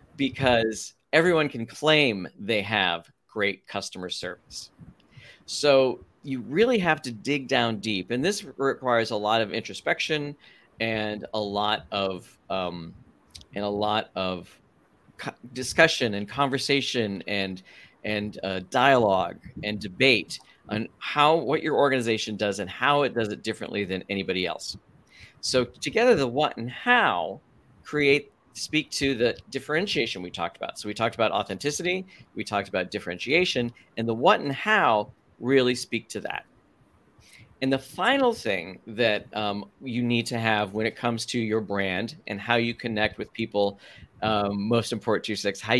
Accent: American